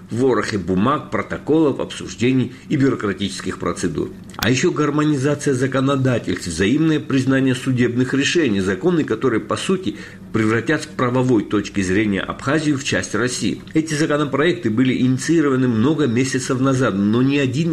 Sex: male